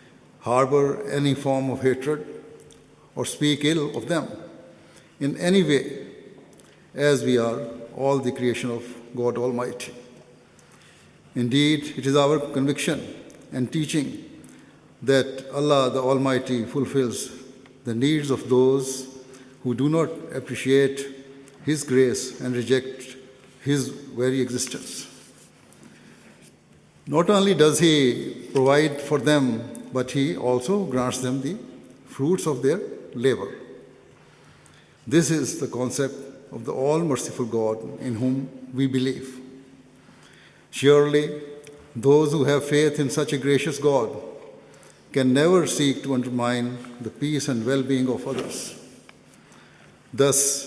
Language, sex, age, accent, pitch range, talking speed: English, male, 60-79, Indian, 125-145 Hz, 120 wpm